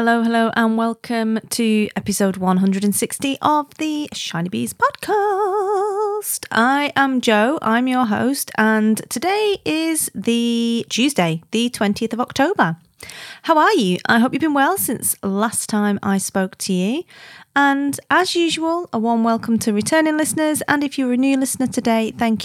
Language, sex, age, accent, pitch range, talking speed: English, female, 30-49, British, 200-275 Hz, 160 wpm